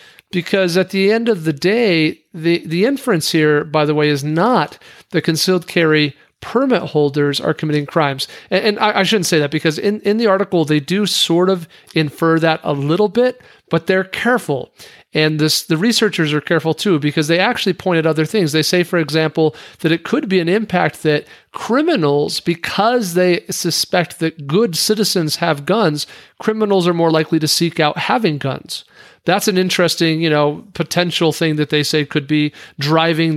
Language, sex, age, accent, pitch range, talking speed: English, male, 40-59, American, 150-185 Hz, 185 wpm